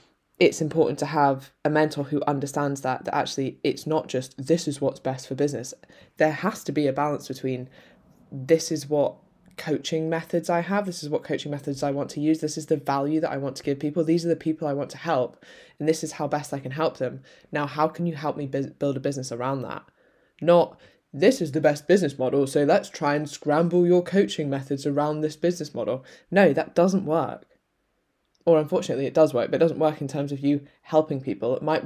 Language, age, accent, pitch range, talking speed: English, 10-29, British, 140-160 Hz, 230 wpm